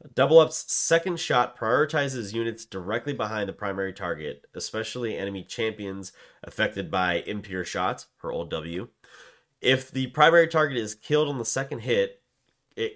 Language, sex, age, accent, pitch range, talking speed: English, male, 30-49, American, 90-125 Hz, 150 wpm